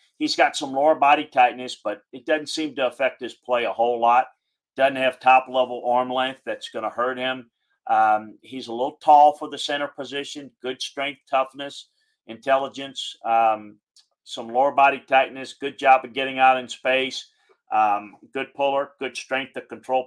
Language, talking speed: English, 175 wpm